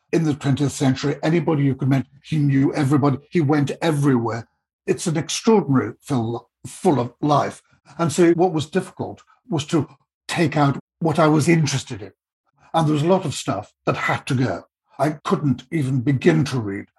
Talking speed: 185 wpm